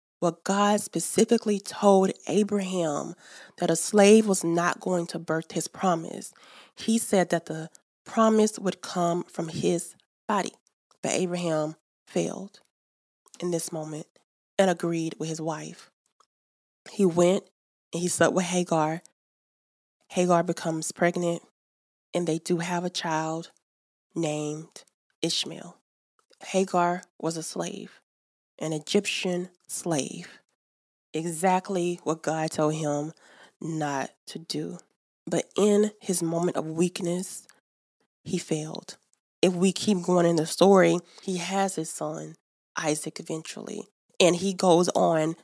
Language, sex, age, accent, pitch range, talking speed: English, female, 20-39, American, 160-185 Hz, 125 wpm